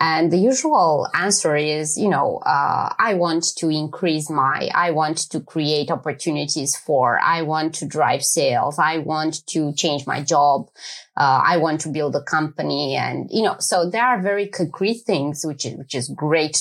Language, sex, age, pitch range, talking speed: English, female, 20-39, 155-200 Hz, 185 wpm